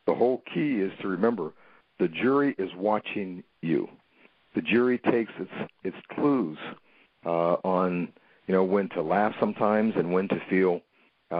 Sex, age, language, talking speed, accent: male, 50-69, English, 160 wpm, American